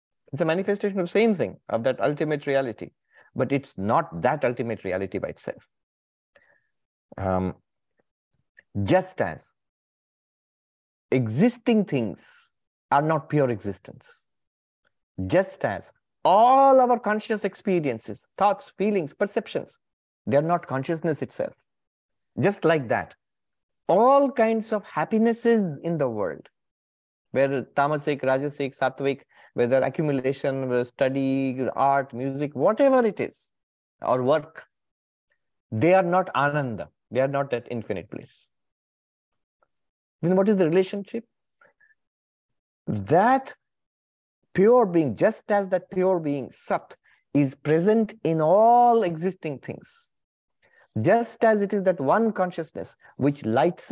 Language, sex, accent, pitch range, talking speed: English, male, Indian, 135-210 Hz, 120 wpm